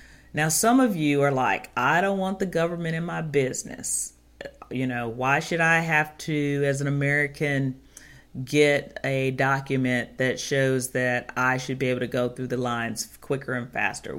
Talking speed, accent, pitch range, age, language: 180 wpm, American, 130-165 Hz, 40-59, English